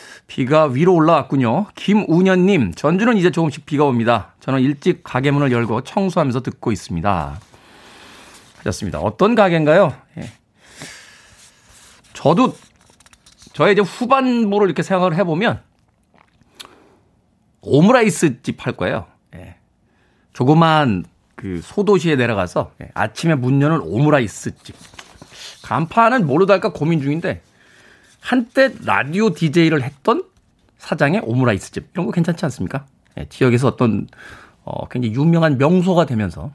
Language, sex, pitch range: Korean, male, 120-185 Hz